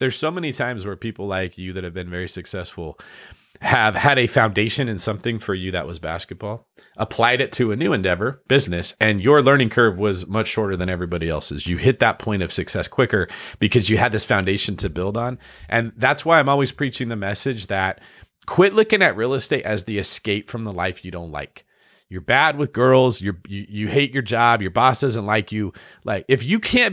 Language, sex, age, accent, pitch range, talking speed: English, male, 30-49, American, 95-130 Hz, 220 wpm